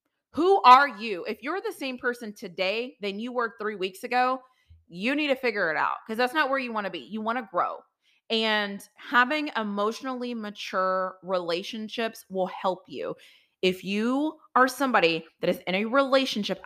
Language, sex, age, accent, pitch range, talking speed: English, female, 30-49, American, 190-265 Hz, 180 wpm